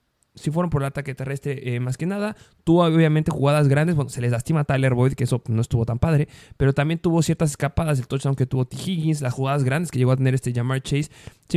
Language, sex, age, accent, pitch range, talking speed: Spanish, male, 20-39, Mexican, 145-190 Hz, 260 wpm